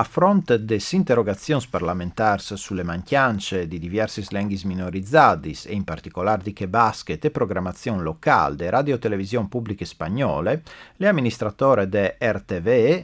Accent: native